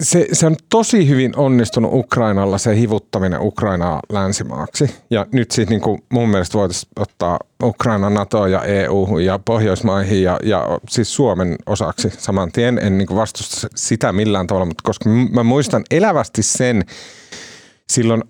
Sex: male